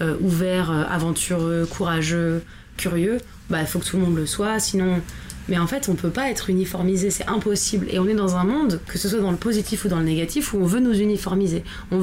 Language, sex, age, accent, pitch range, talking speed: French, female, 20-39, French, 170-210 Hz, 235 wpm